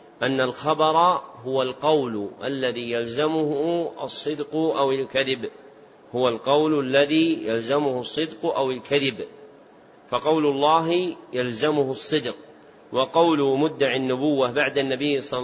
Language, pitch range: Arabic, 130-155 Hz